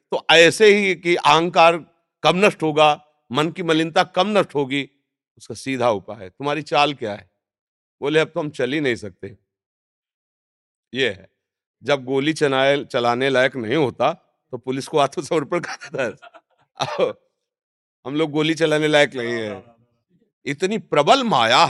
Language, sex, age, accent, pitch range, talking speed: Hindi, male, 40-59, native, 135-180 Hz, 150 wpm